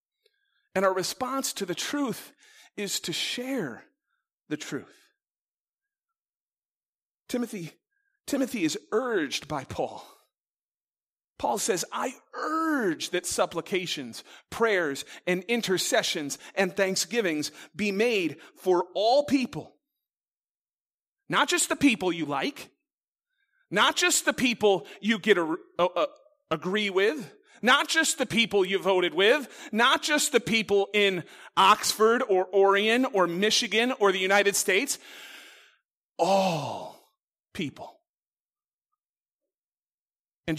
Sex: male